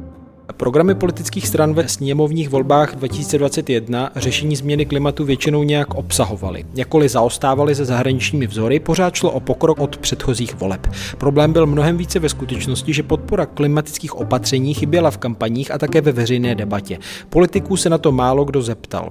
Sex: male